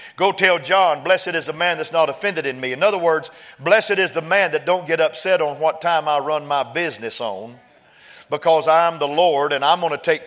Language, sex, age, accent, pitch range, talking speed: English, male, 50-69, American, 150-195 Hz, 235 wpm